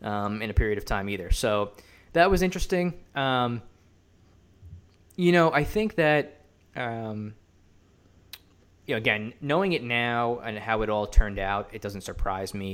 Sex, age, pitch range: male, 20-39, 95-115 Hz